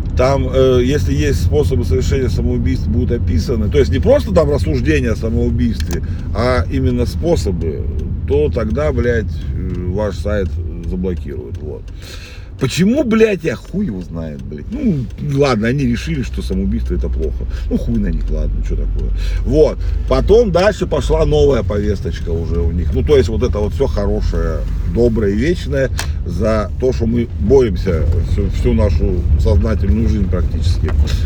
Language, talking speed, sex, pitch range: Russian, 150 wpm, male, 80-105 Hz